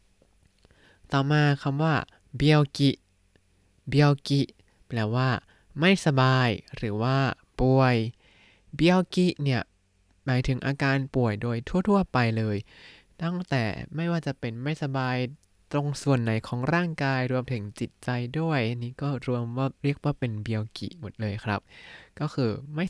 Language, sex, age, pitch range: Thai, male, 20-39, 105-140 Hz